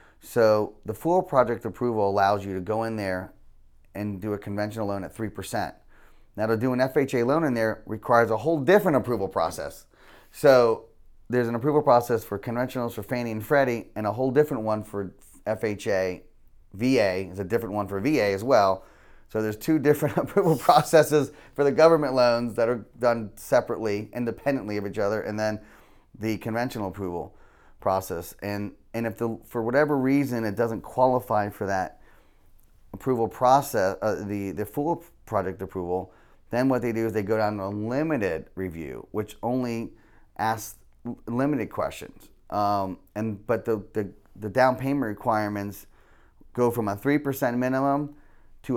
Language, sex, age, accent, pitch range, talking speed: English, male, 30-49, American, 100-130 Hz, 165 wpm